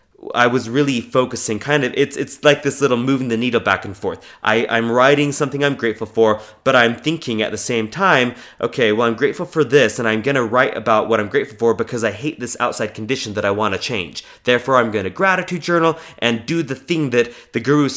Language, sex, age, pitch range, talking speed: English, male, 20-39, 110-145 Hz, 235 wpm